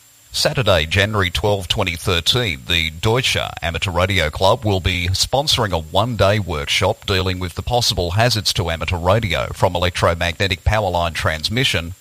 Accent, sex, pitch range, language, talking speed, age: Australian, male, 90-110 Hz, English, 140 wpm, 40-59